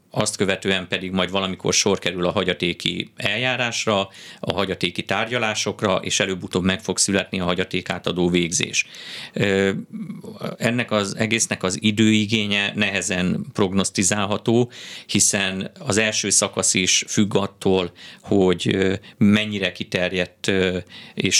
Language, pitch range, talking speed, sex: Hungarian, 95-110 Hz, 110 wpm, male